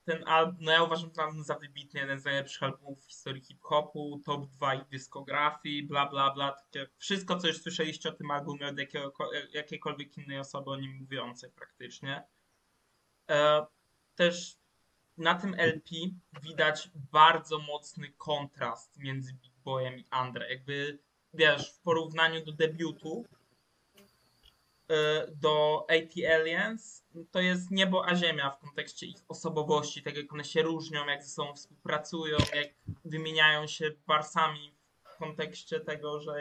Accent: native